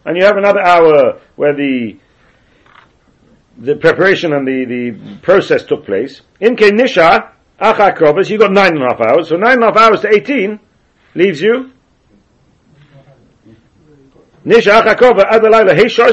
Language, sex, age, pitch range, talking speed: English, male, 60-79, 150-225 Hz, 155 wpm